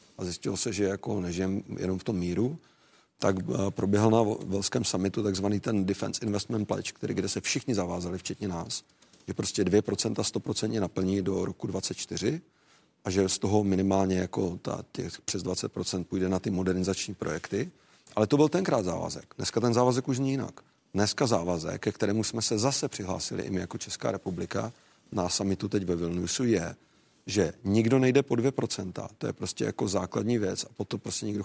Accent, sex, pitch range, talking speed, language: native, male, 95-120 Hz, 185 wpm, Czech